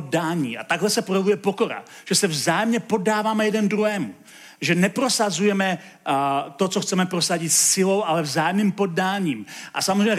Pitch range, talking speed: 165-205 Hz, 135 wpm